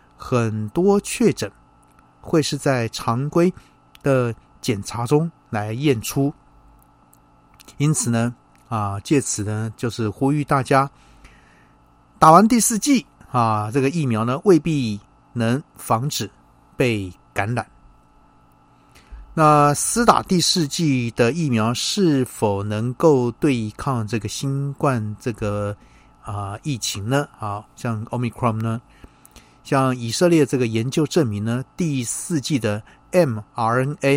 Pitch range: 110-150 Hz